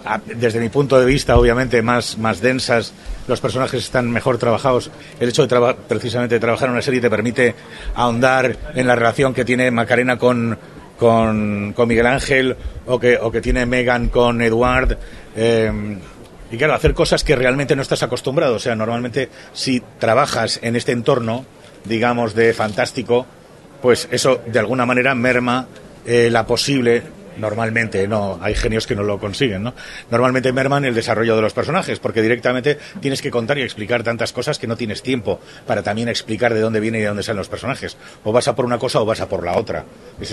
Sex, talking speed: male, 195 wpm